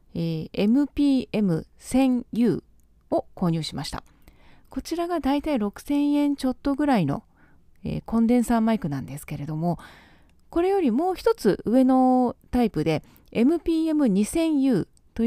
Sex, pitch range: female, 160-260 Hz